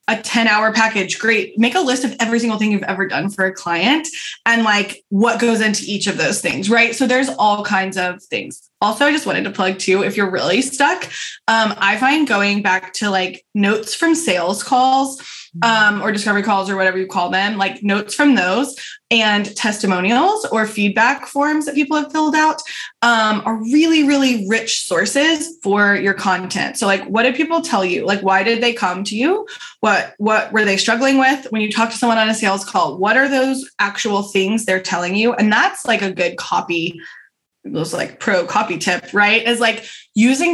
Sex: female